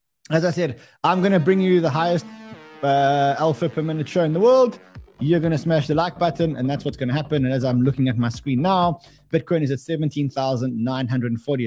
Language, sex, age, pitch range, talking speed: English, male, 20-39, 130-165 Hz, 220 wpm